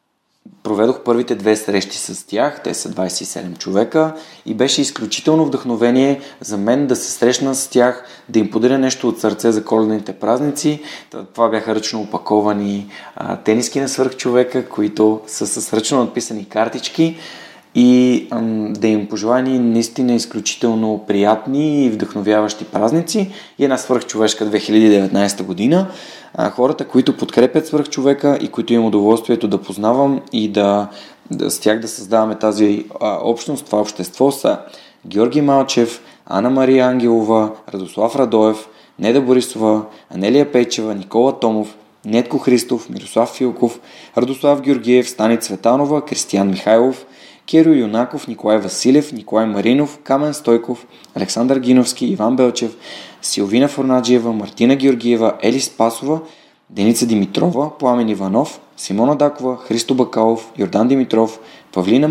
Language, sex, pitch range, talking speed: Bulgarian, male, 110-130 Hz, 130 wpm